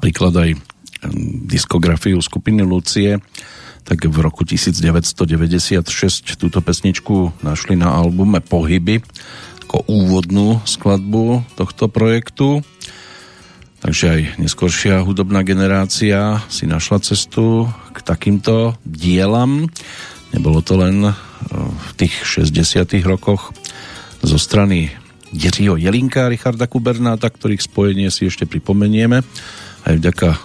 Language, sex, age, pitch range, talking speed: Slovak, male, 40-59, 85-110 Hz, 100 wpm